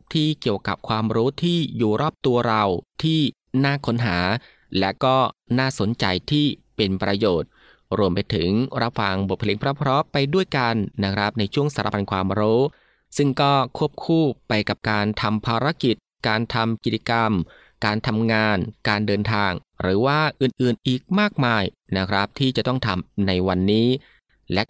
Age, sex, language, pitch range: 20-39, male, Thai, 100-135 Hz